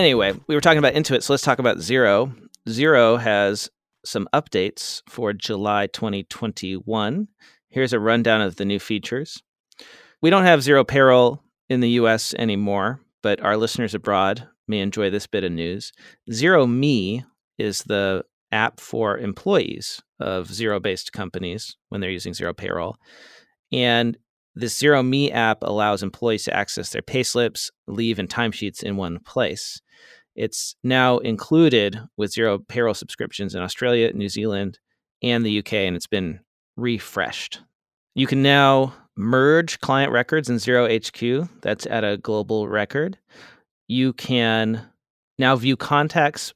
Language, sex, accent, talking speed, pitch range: English, male, American, 145 wpm, 105-130 Hz